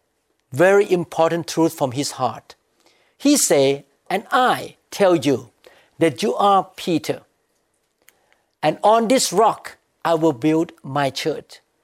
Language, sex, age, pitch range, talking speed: English, male, 50-69, 150-190 Hz, 125 wpm